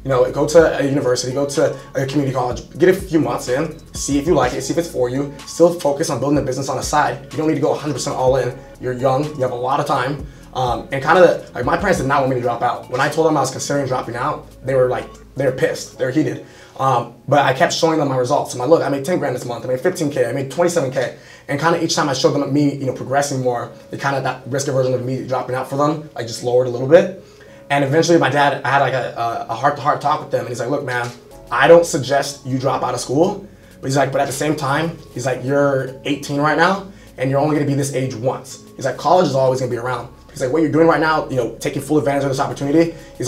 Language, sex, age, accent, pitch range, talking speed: English, male, 20-39, American, 125-145 Hz, 295 wpm